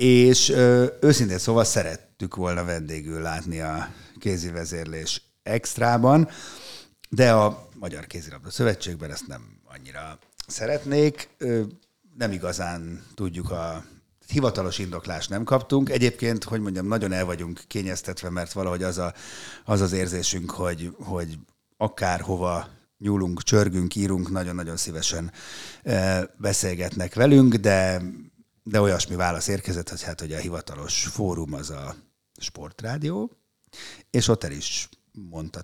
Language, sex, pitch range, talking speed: Hungarian, male, 85-110 Hz, 115 wpm